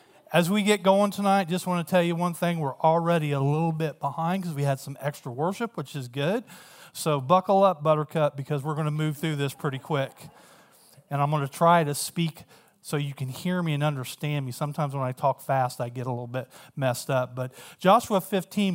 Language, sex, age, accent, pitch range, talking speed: English, male, 40-59, American, 145-180 Hz, 225 wpm